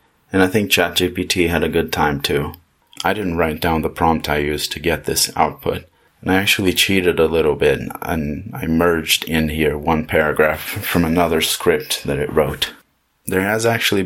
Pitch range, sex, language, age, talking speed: 75-90 Hz, male, English, 30-49, 190 wpm